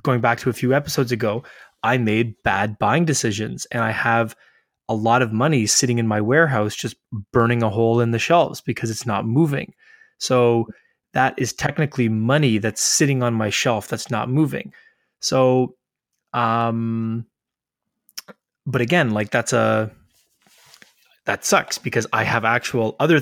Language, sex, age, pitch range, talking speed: English, male, 20-39, 115-140 Hz, 160 wpm